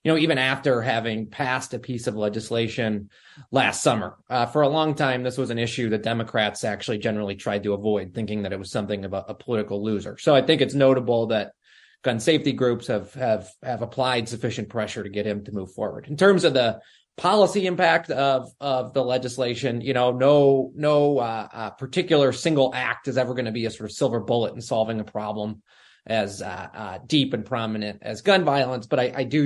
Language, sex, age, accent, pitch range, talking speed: English, male, 30-49, American, 110-135 Hz, 215 wpm